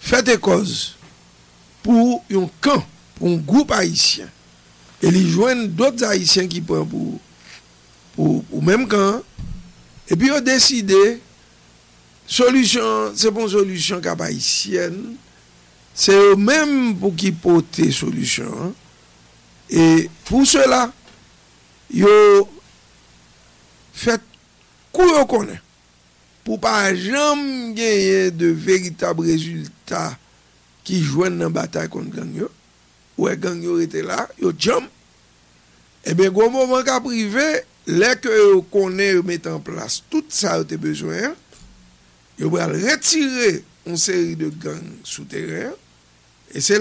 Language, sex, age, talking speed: English, male, 60-79, 120 wpm